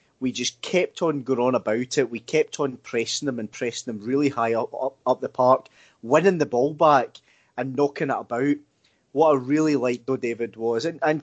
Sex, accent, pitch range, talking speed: male, British, 120-145 Hz, 215 wpm